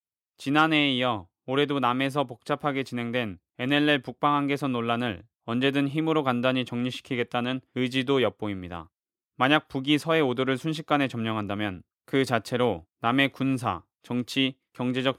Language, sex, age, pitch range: Korean, male, 20-39, 120-140 Hz